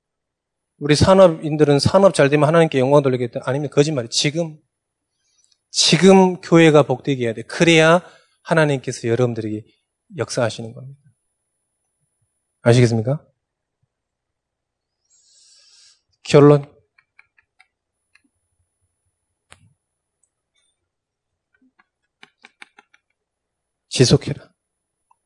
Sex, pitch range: male, 130-185 Hz